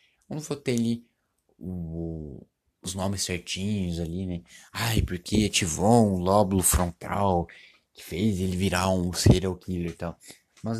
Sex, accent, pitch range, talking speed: male, Brazilian, 90-115 Hz, 145 wpm